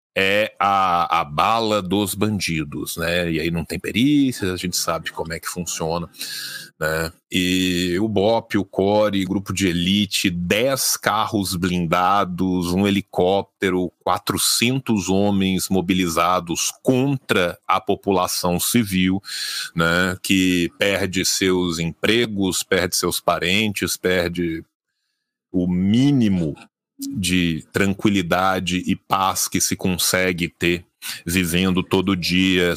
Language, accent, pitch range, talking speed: Portuguese, Brazilian, 90-105 Hz, 115 wpm